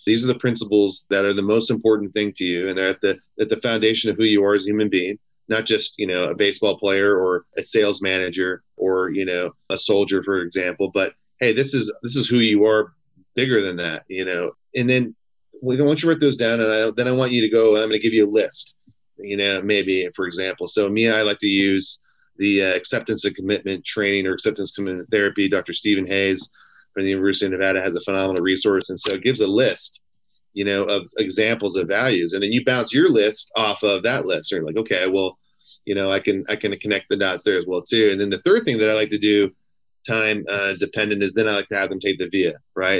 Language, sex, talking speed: English, male, 250 wpm